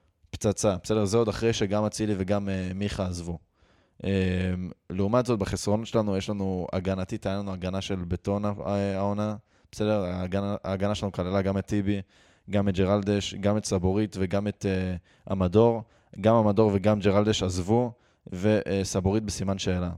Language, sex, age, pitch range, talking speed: Hebrew, male, 20-39, 95-110 Hz, 145 wpm